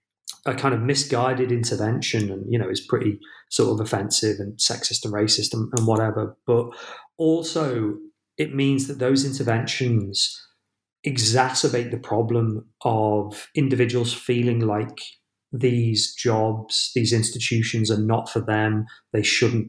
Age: 30-49